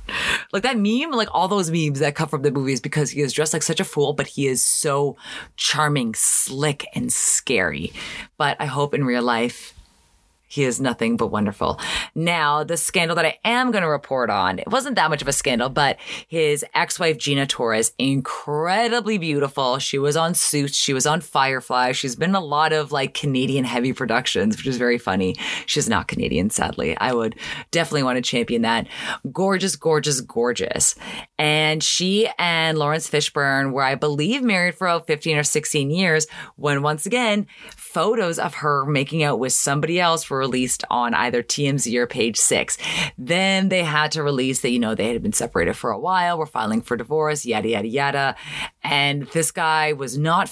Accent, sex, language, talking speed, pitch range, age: American, female, English, 190 wpm, 135-165 Hz, 20-39